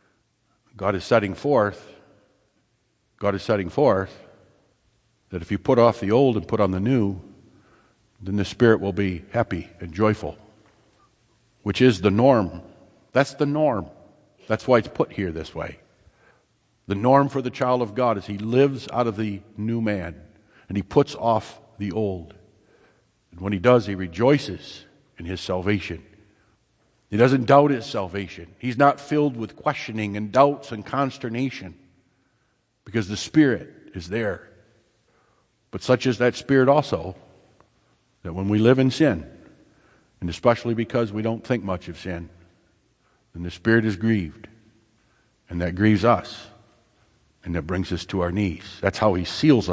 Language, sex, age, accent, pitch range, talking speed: English, male, 50-69, American, 95-125 Hz, 160 wpm